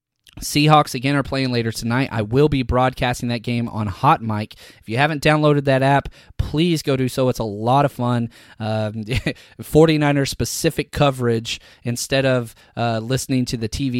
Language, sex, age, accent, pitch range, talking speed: English, male, 20-39, American, 115-140 Hz, 170 wpm